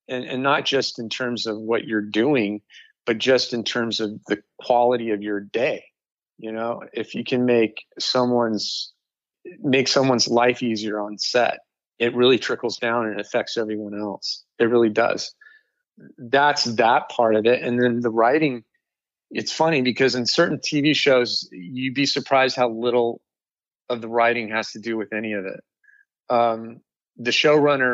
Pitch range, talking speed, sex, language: 115-135 Hz, 170 wpm, male, English